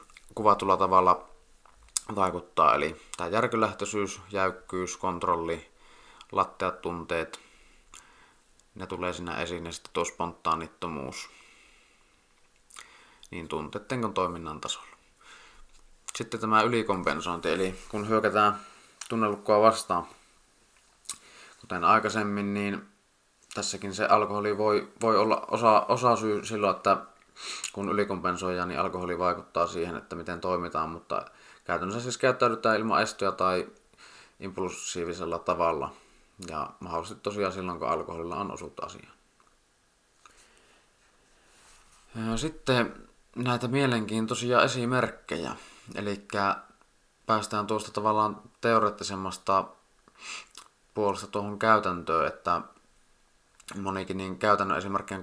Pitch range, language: 95-110 Hz, Finnish